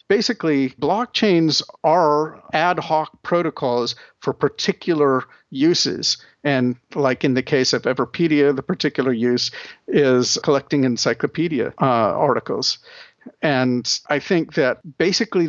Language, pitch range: English, 135-165 Hz